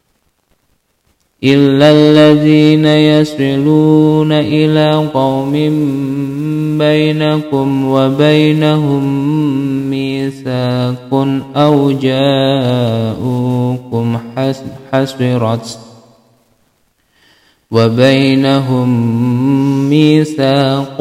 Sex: male